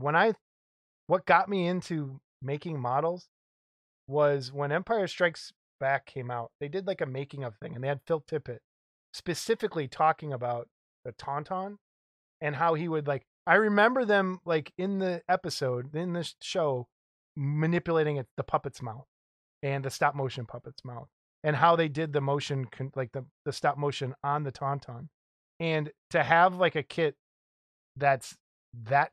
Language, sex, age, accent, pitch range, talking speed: English, male, 20-39, American, 125-165 Hz, 165 wpm